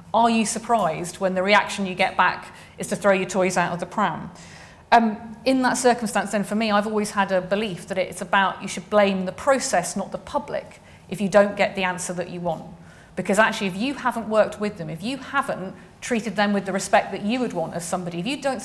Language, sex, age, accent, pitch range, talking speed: English, female, 30-49, British, 185-230 Hz, 240 wpm